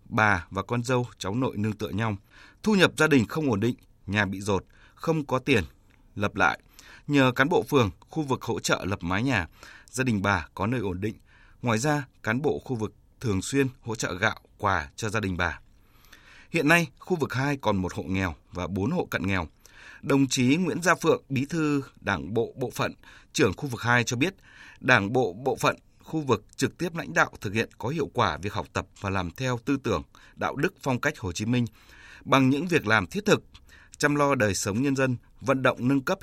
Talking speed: 225 wpm